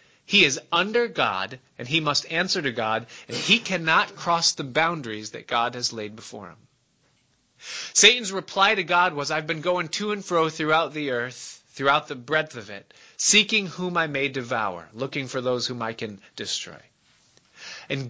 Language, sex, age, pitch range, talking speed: English, male, 30-49, 125-180 Hz, 180 wpm